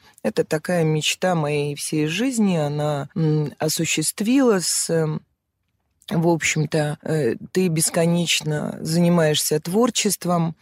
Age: 20-39